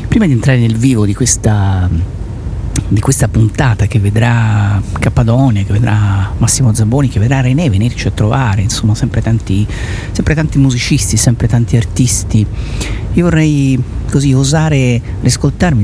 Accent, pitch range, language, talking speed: native, 105-125 Hz, Italian, 140 wpm